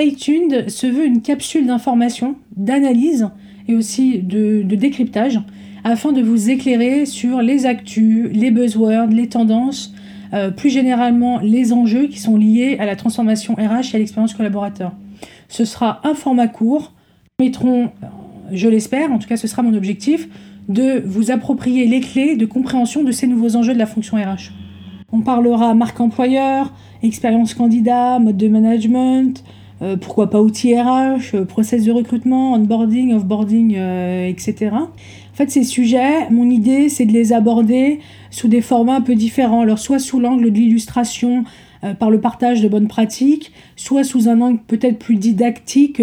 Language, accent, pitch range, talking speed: French, French, 215-250 Hz, 165 wpm